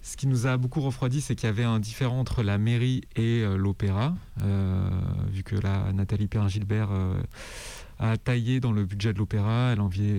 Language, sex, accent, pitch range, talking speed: French, male, French, 95-115 Hz, 205 wpm